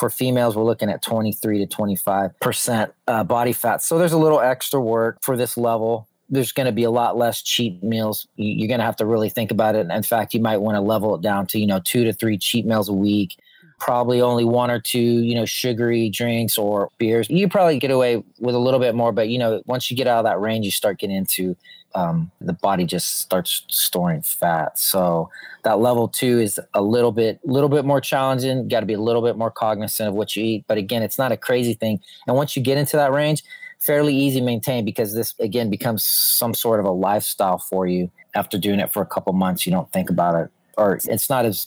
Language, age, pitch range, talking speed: English, 30-49, 105-125 Hz, 245 wpm